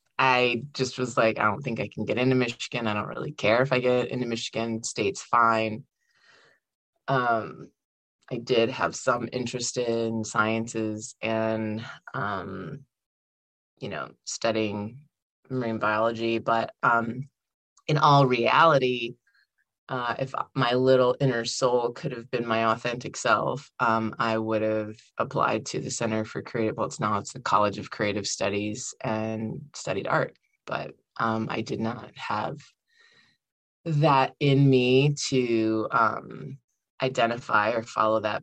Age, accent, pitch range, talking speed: 20-39, American, 110-130 Hz, 145 wpm